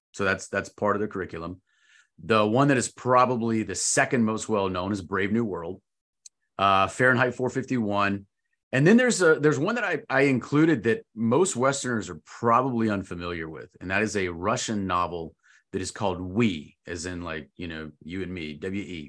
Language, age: English, 30-49